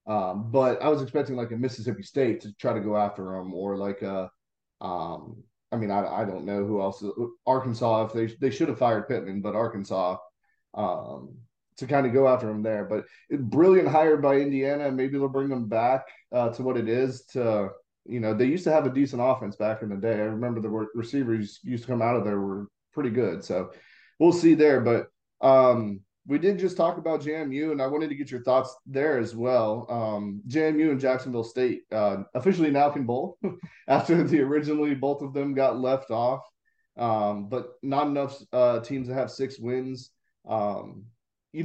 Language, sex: English, male